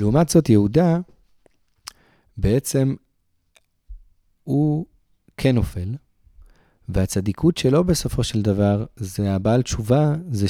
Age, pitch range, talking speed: 30-49, 100-140 Hz, 90 wpm